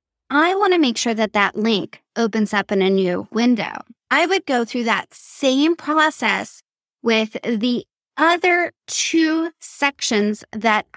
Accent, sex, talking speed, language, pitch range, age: American, female, 150 wpm, English, 210-270 Hz, 20-39